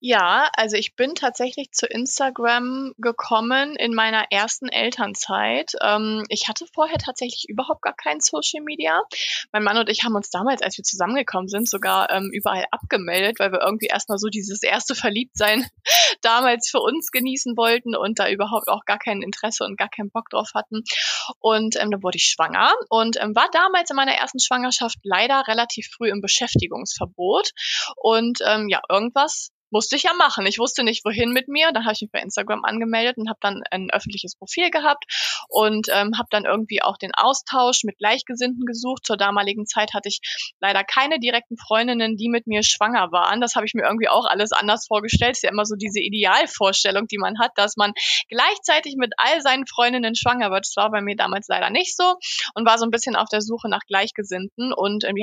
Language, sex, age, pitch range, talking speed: German, female, 20-39, 205-255 Hz, 195 wpm